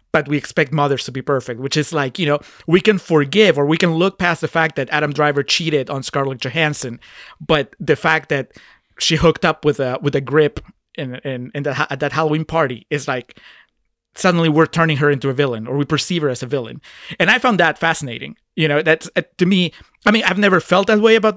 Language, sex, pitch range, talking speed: English, male, 140-170 Hz, 235 wpm